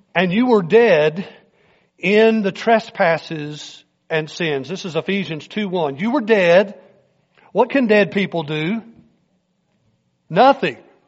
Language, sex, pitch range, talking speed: English, male, 165-215 Hz, 120 wpm